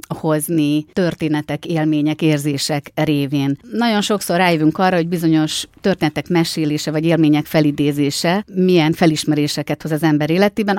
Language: Hungarian